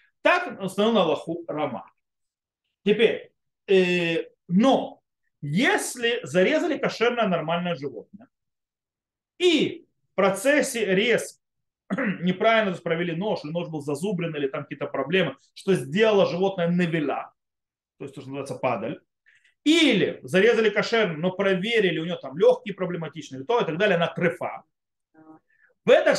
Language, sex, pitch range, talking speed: Russian, male, 170-225 Hz, 135 wpm